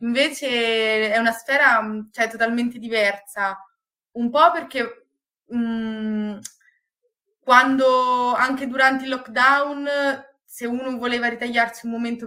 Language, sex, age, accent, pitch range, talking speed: Italian, female, 20-39, native, 210-245 Hz, 110 wpm